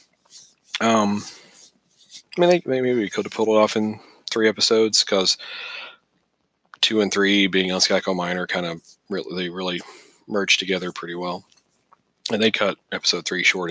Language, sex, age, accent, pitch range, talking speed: English, male, 30-49, American, 95-125 Hz, 160 wpm